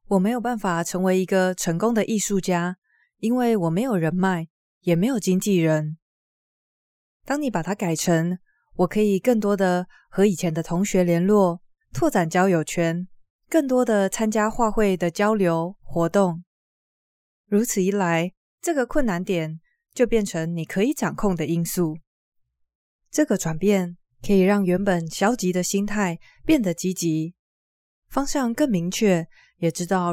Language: Chinese